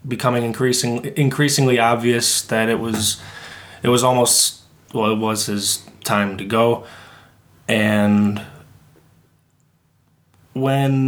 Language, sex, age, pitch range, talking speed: English, male, 20-39, 105-120 Hz, 105 wpm